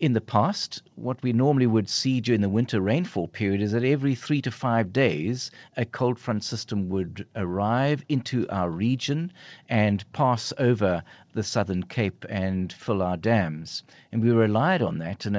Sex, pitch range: male, 100-135 Hz